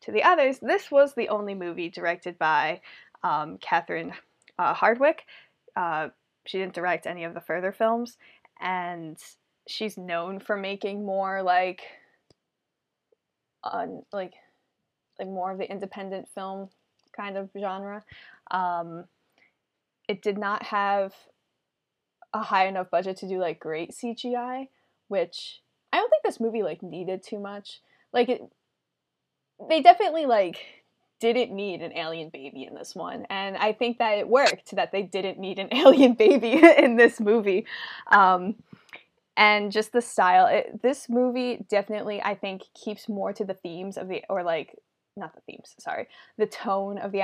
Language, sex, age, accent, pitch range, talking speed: English, female, 10-29, American, 185-225 Hz, 155 wpm